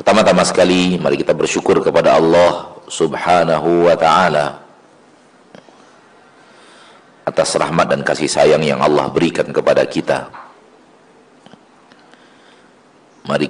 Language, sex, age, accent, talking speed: Indonesian, male, 50-69, native, 95 wpm